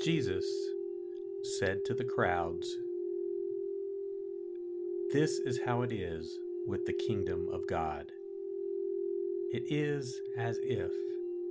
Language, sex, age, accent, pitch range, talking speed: English, male, 50-69, American, 370-390 Hz, 100 wpm